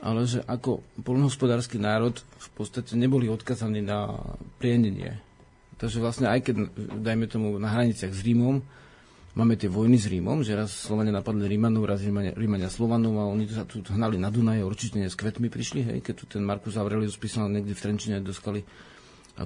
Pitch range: 105-125 Hz